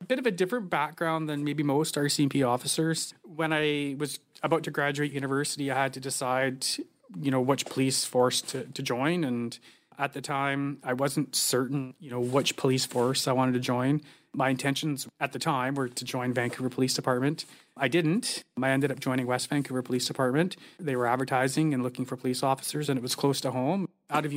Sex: male